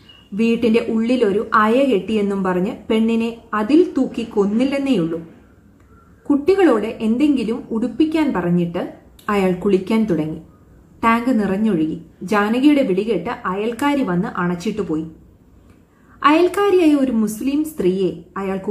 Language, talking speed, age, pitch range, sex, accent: Malayalam, 95 wpm, 30-49, 185-270 Hz, female, native